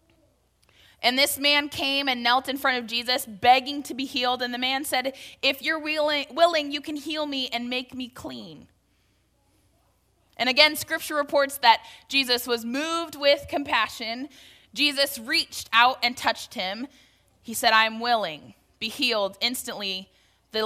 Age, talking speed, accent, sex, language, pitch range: 20-39, 155 wpm, American, female, English, 230-275 Hz